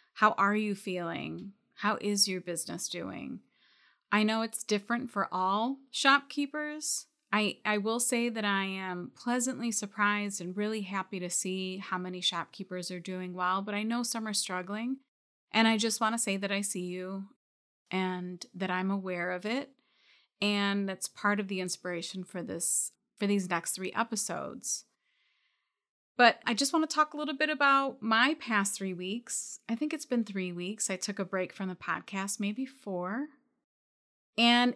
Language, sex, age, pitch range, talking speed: English, female, 30-49, 190-235 Hz, 175 wpm